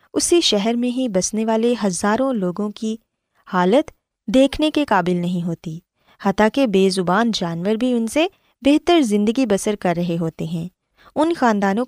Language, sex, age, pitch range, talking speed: Urdu, female, 20-39, 180-245 Hz, 160 wpm